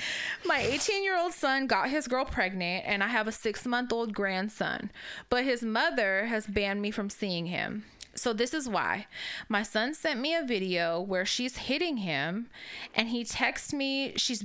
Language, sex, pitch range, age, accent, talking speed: English, female, 185-235 Hz, 20-39, American, 185 wpm